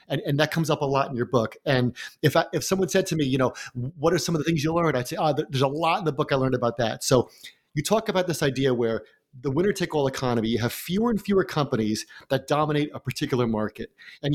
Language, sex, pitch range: English, male, 125-170 Hz